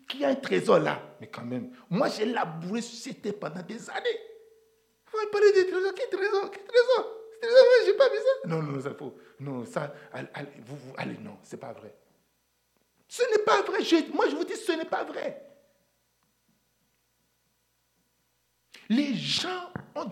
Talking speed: 180 wpm